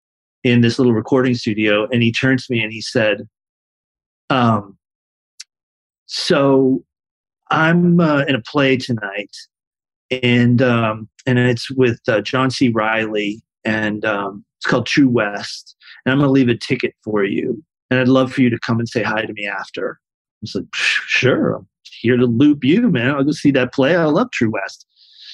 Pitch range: 115-140 Hz